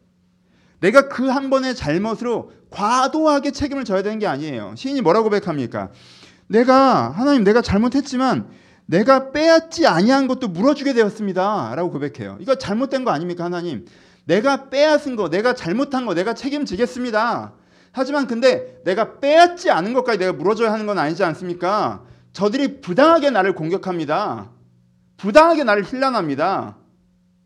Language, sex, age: Korean, male, 40-59